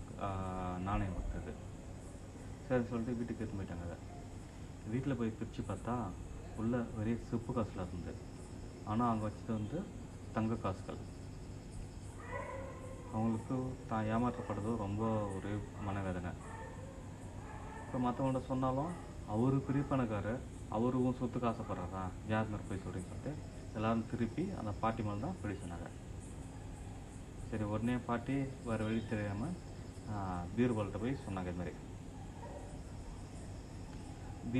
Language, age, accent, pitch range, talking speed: Tamil, 30-49, native, 95-120 Hz, 95 wpm